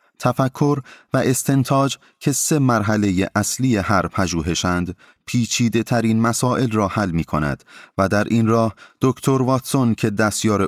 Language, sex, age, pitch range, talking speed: Persian, male, 30-49, 90-120 Hz, 135 wpm